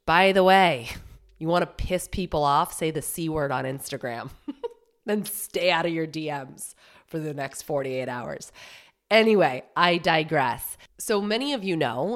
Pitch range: 135-180 Hz